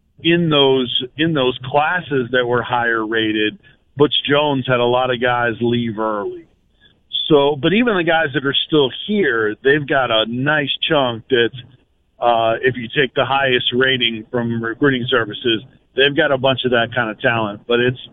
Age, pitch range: 40-59, 120-150 Hz